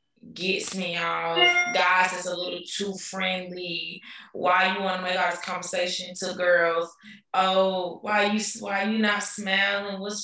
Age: 20-39